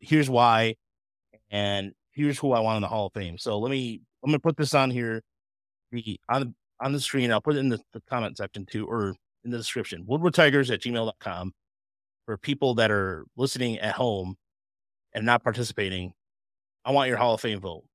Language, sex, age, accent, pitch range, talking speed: English, male, 30-49, American, 105-140 Hz, 190 wpm